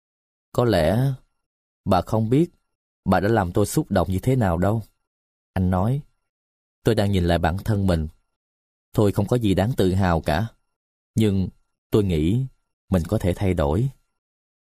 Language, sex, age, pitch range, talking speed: Vietnamese, male, 20-39, 85-110 Hz, 165 wpm